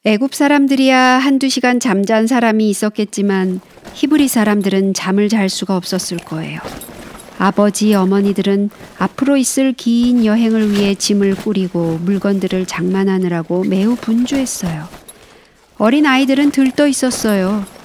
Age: 50-69